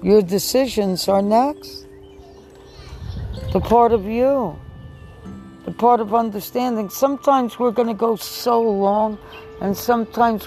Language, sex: English, female